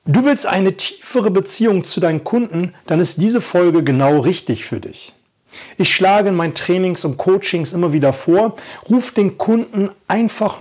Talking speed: 170 wpm